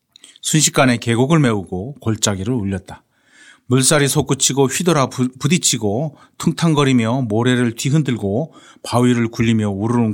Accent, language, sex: native, Korean, male